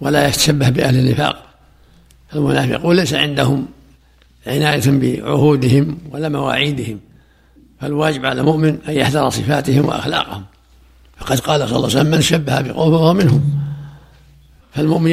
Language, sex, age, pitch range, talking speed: Arabic, male, 60-79, 110-150 Hz, 115 wpm